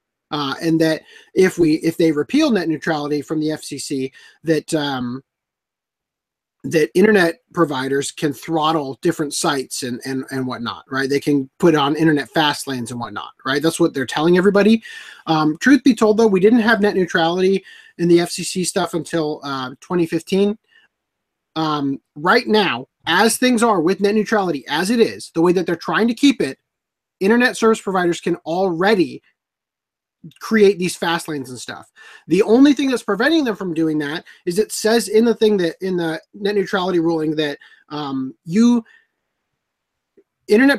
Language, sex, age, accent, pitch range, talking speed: English, male, 30-49, American, 155-215 Hz, 170 wpm